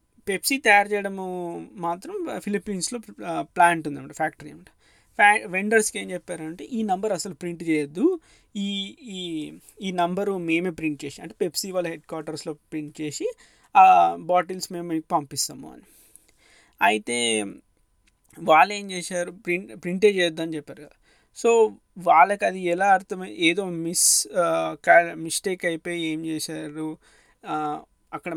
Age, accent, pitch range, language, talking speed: 20-39, native, 160-200 Hz, Telugu, 120 wpm